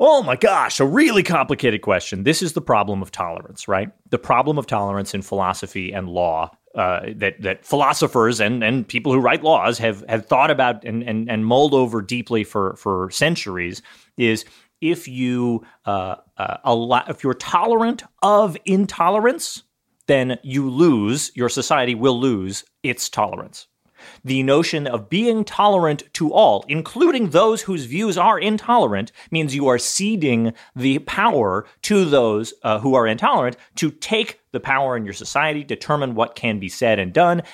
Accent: American